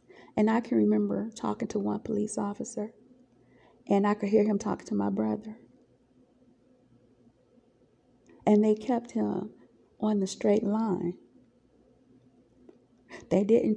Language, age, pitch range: English, 40-59, 180-230 Hz